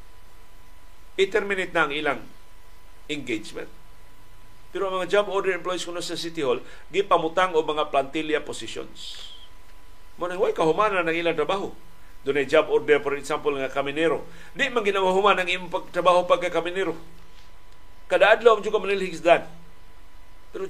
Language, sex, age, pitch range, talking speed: Filipino, male, 50-69, 135-215 Hz, 135 wpm